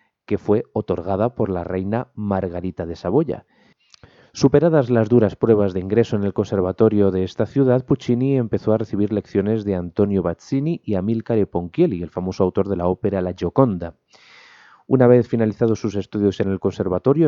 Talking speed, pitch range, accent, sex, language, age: 165 wpm, 95-120 Hz, Spanish, male, Spanish, 30-49